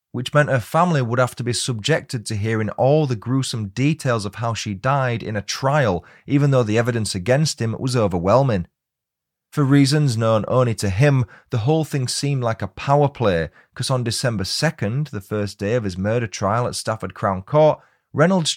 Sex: male